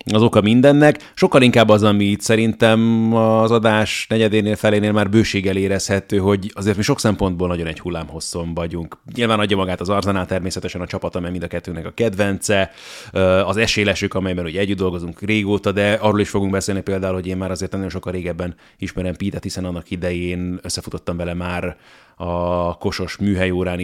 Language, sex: Hungarian, male